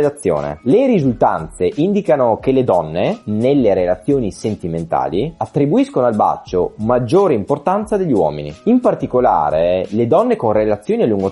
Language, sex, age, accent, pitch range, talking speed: Italian, male, 30-49, native, 115-185 Hz, 125 wpm